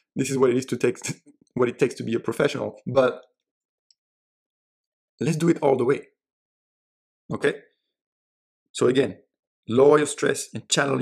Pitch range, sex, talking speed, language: 115-145 Hz, male, 165 wpm, English